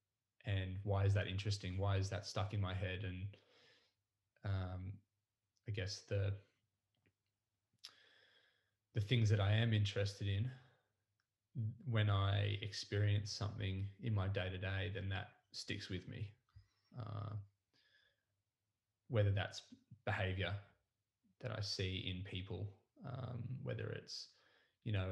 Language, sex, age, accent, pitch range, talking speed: English, male, 20-39, Australian, 100-110 Hz, 125 wpm